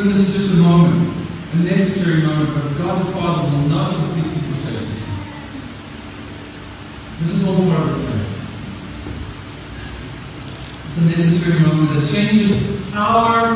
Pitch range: 130-185 Hz